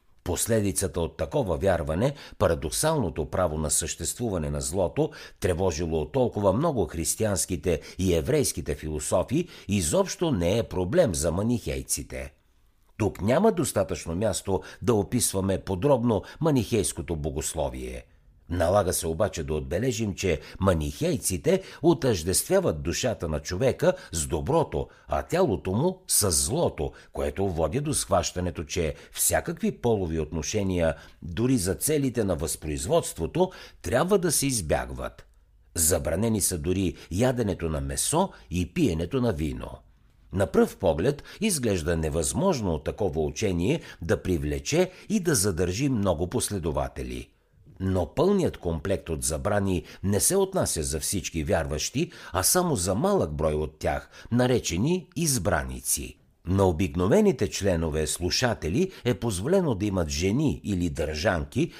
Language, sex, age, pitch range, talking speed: Bulgarian, male, 60-79, 80-120 Hz, 120 wpm